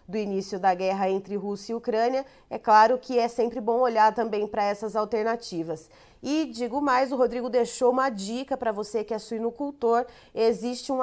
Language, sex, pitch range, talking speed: Portuguese, female, 205-245 Hz, 185 wpm